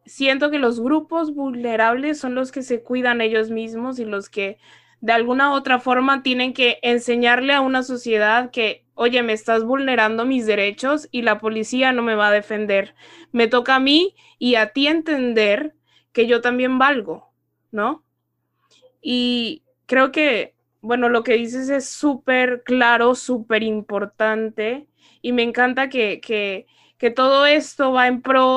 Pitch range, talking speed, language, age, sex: 220-260 Hz, 160 wpm, Spanish, 20-39, female